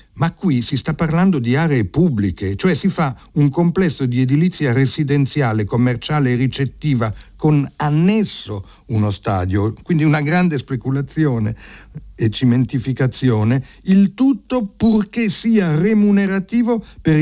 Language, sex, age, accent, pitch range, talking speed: Italian, male, 50-69, native, 110-150 Hz, 120 wpm